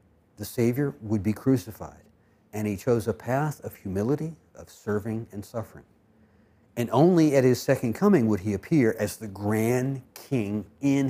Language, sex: English, male